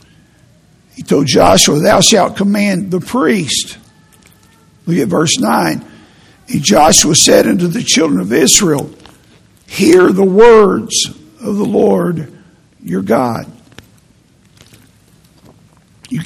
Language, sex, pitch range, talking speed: English, male, 155-210 Hz, 105 wpm